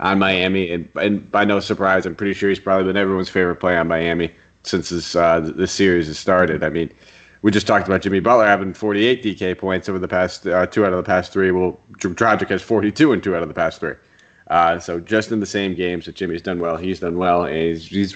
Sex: male